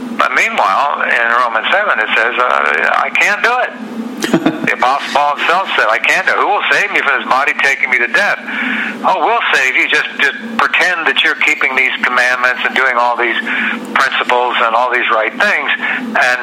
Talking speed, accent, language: 200 wpm, American, English